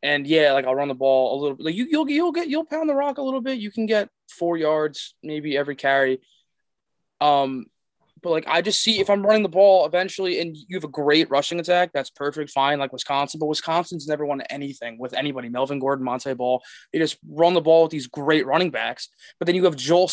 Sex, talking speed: male, 235 wpm